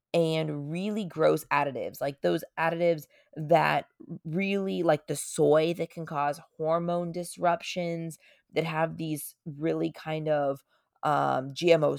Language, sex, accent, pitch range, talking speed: English, female, American, 160-200 Hz, 125 wpm